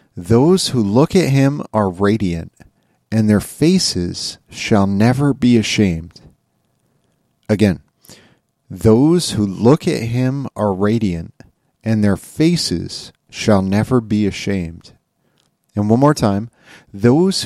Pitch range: 105-140 Hz